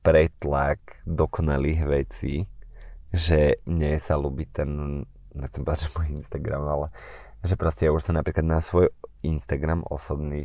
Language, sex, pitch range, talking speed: Slovak, male, 75-85 Hz, 140 wpm